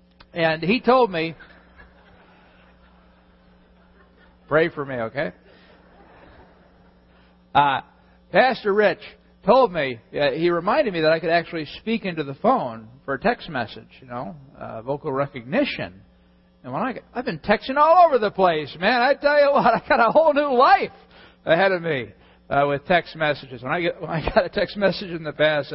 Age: 50-69